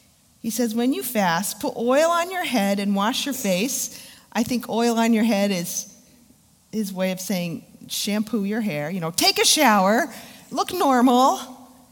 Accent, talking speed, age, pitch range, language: American, 175 wpm, 40-59, 175-235 Hz, English